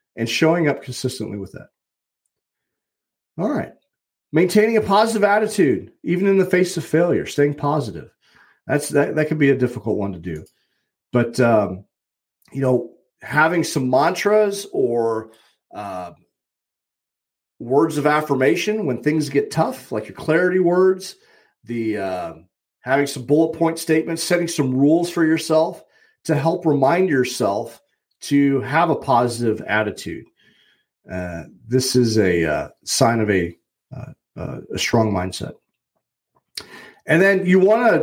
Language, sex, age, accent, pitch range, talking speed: English, male, 40-59, American, 120-165 Hz, 140 wpm